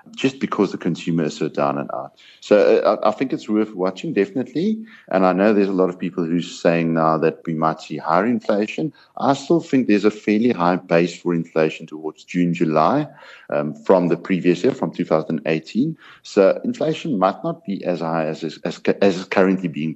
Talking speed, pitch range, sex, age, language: 200 wpm, 80-100 Hz, male, 50-69, English